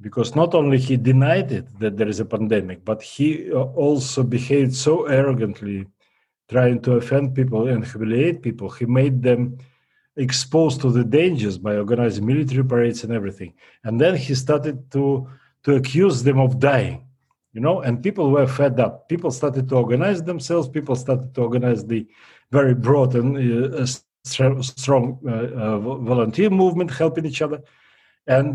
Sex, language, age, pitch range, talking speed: male, English, 40-59, 120-150 Hz, 160 wpm